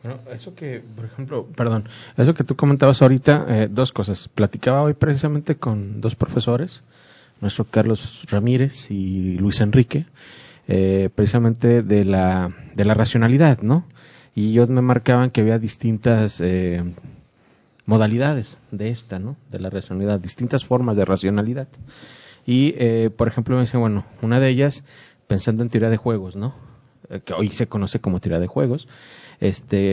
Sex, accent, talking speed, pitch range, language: male, Mexican, 160 wpm, 105-130 Hz, Spanish